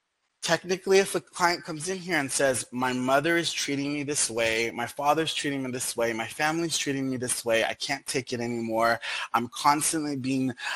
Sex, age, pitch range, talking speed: male, 30-49, 135-170 Hz, 200 wpm